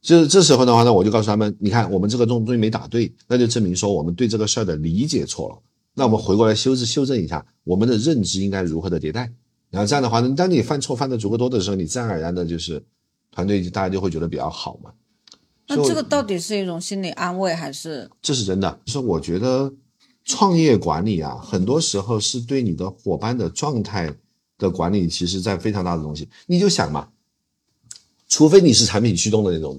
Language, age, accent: Chinese, 50-69, native